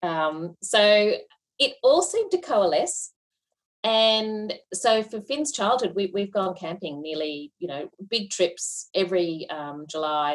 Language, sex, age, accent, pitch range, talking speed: English, female, 30-49, Australian, 155-200 Hz, 140 wpm